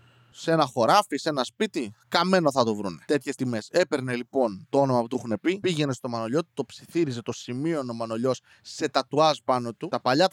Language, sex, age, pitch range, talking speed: Greek, male, 20-39, 125-165 Hz, 205 wpm